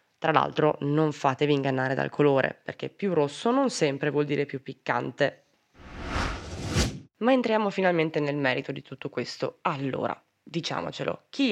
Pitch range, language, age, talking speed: 135-175 Hz, Italian, 20-39, 140 wpm